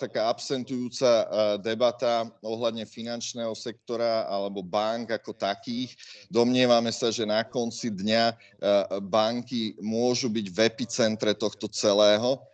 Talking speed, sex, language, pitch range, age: 110 wpm, male, Slovak, 105-115 Hz, 30-49